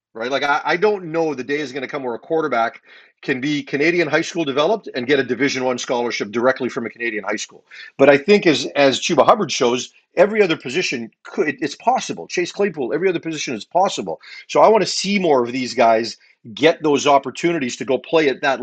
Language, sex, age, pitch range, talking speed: English, male, 40-59, 130-160 Hz, 230 wpm